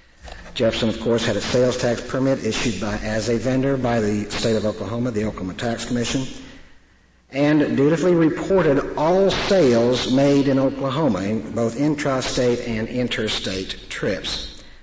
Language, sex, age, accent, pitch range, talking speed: English, male, 50-69, American, 105-135 Hz, 140 wpm